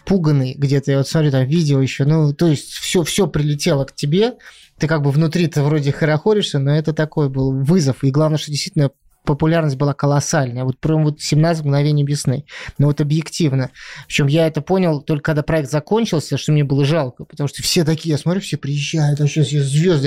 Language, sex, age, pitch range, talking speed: Russian, male, 20-39, 140-165 Hz, 205 wpm